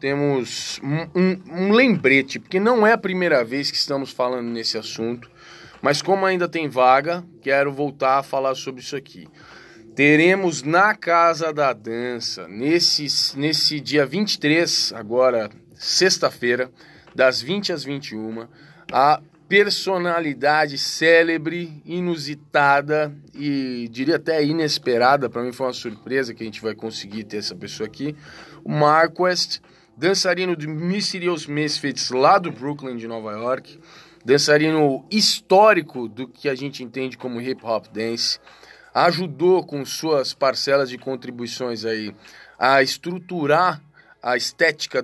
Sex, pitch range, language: male, 125-170 Hz, Portuguese